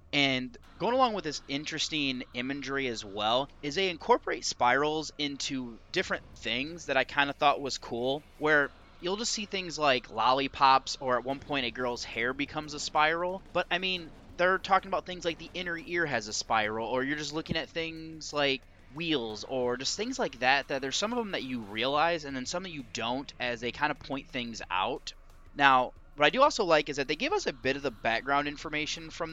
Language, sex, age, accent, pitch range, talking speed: English, male, 30-49, American, 125-160 Hz, 215 wpm